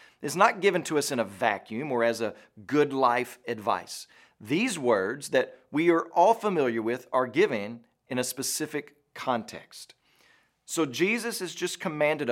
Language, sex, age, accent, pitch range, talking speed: English, male, 40-59, American, 125-165 Hz, 160 wpm